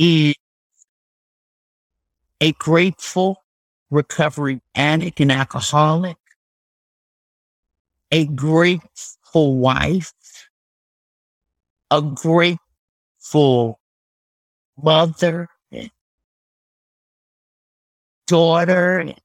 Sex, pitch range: male, 135-170 Hz